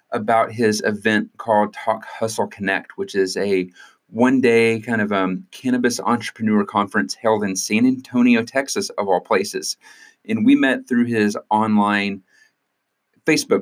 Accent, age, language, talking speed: American, 30-49, English, 145 wpm